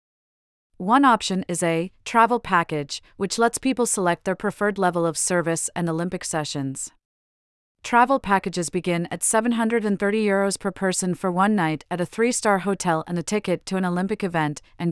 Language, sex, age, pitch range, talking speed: English, female, 40-59, 170-200 Hz, 160 wpm